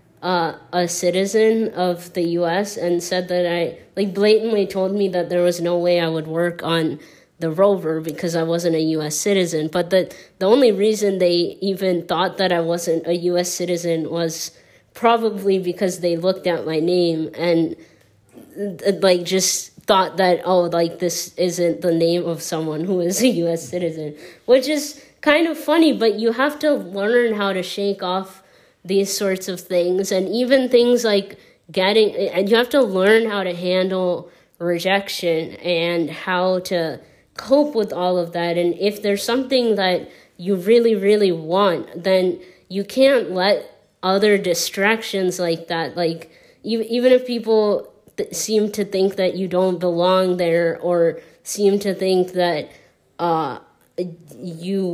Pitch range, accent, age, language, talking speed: 170-200 Hz, American, 20-39, Hindi, 165 wpm